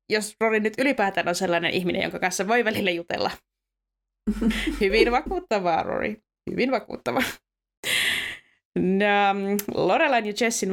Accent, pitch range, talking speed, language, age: native, 175-225 Hz, 115 wpm, Finnish, 20-39